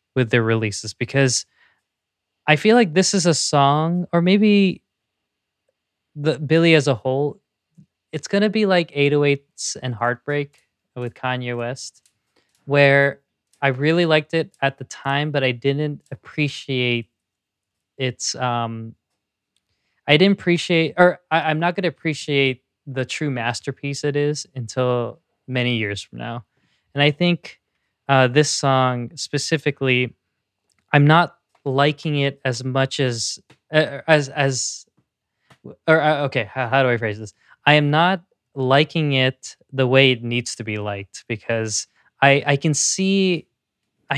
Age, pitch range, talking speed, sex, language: 20-39, 120-155 Hz, 145 wpm, male, English